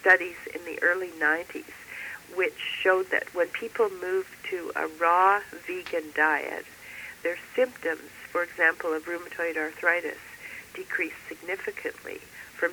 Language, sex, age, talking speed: English, female, 60-79, 125 wpm